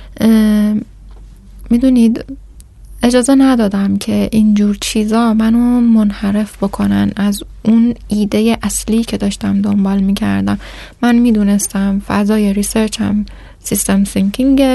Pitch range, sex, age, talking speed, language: 200-245 Hz, female, 10-29, 100 wpm, Persian